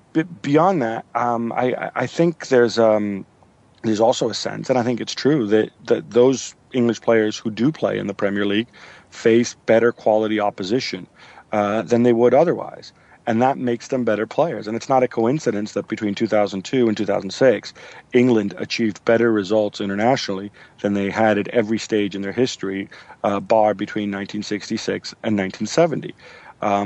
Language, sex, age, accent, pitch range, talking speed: English, male, 40-59, American, 105-120 Hz, 165 wpm